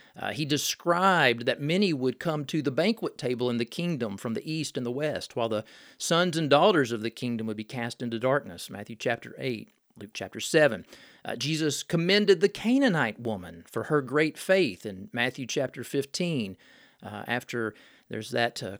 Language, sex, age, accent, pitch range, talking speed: English, male, 40-59, American, 115-155 Hz, 185 wpm